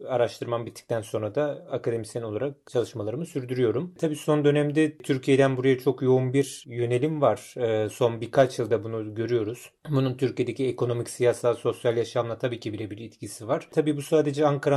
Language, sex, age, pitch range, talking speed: Turkish, male, 30-49, 120-150 Hz, 155 wpm